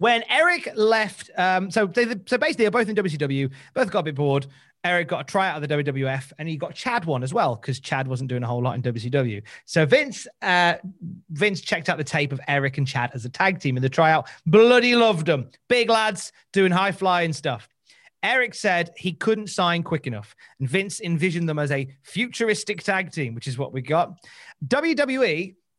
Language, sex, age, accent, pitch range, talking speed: English, male, 30-49, British, 145-210 Hz, 210 wpm